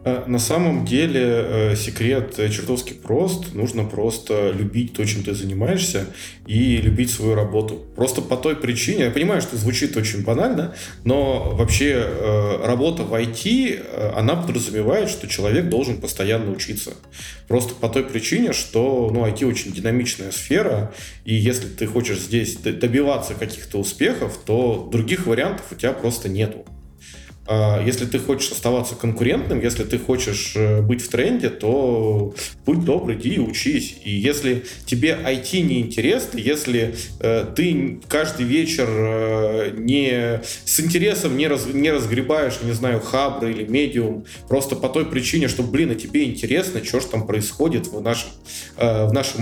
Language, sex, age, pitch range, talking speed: Russian, male, 20-39, 105-130 Hz, 140 wpm